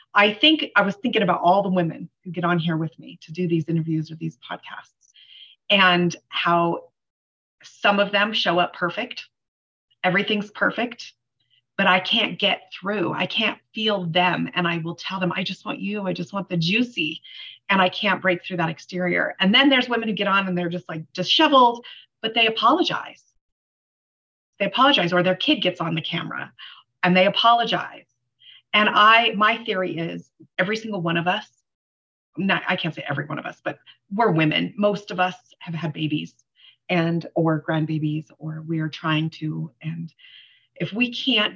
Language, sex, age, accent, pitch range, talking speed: English, female, 30-49, American, 160-205 Hz, 185 wpm